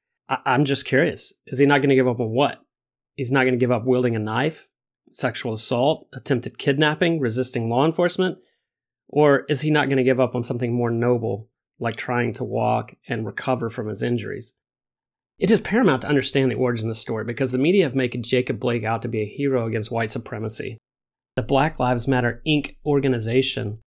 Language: English